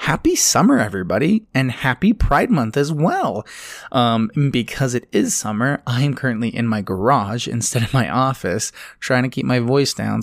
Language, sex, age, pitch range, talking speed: English, male, 20-39, 110-140 Hz, 175 wpm